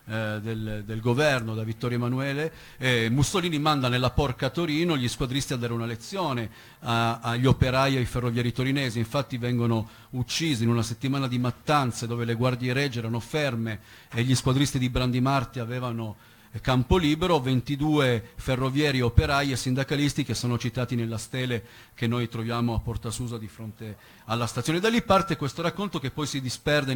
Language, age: Italian, 50-69